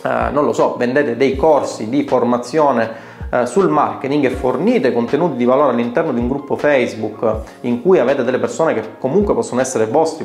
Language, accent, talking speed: Italian, native, 175 wpm